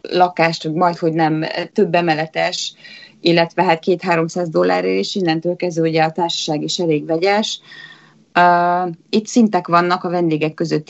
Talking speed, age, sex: 145 wpm, 20-39, female